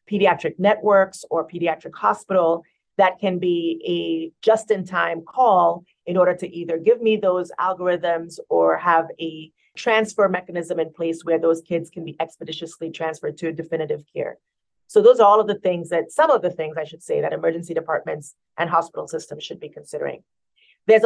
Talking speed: 175 wpm